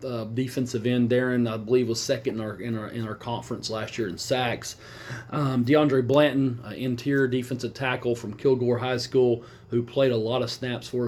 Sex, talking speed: male, 200 wpm